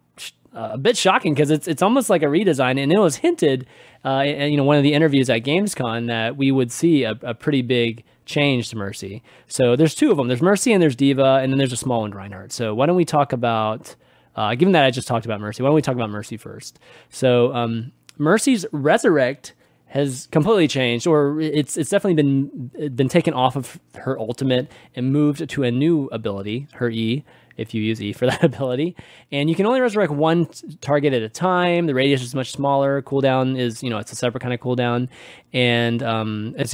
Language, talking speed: English, 220 wpm